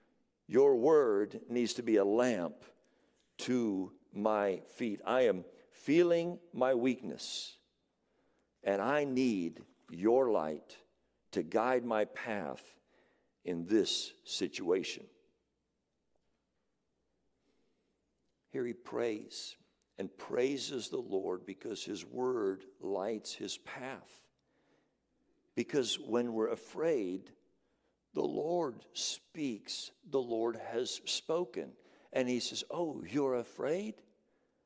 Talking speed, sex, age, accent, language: 100 wpm, male, 60-79, American, English